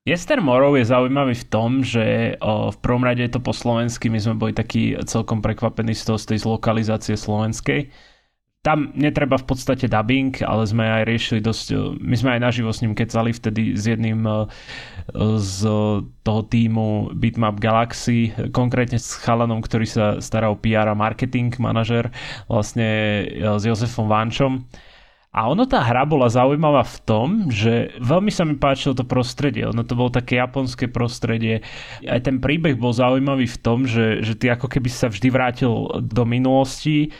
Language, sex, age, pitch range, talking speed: Slovak, male, 20-39, 110-130 Hz, 160 wpm